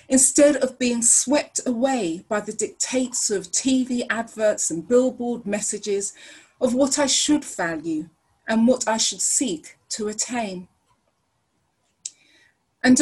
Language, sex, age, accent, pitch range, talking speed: English, female, 30-49, British, 200-265 Hz, 125 wpm